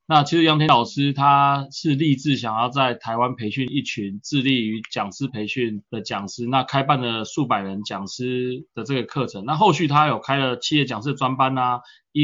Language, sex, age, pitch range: Chinese, male, 20-39, 110-140 Hz